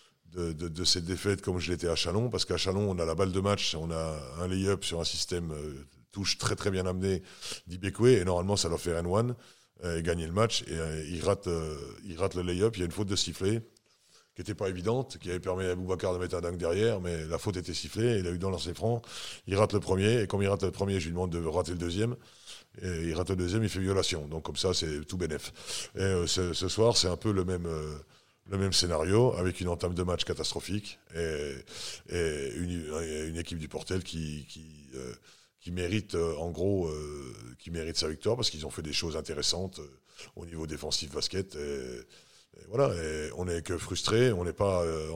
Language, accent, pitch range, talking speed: French, French, 80-100 Hz, 240 wpm